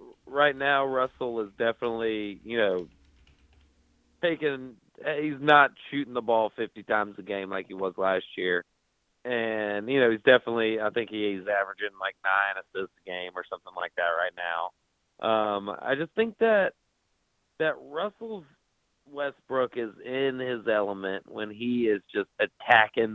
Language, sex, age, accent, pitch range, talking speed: English, male, 30-49, American, 105-140 Hz, 155 wpm